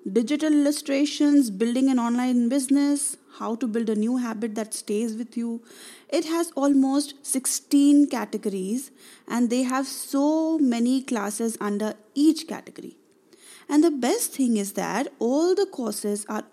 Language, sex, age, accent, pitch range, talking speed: English, female, 20-39, Indian, 210-285 Hz, 145 wpm